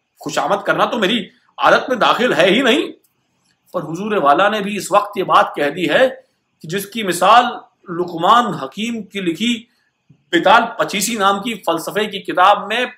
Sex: male